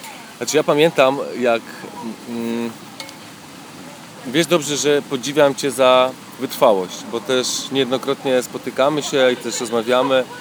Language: Polish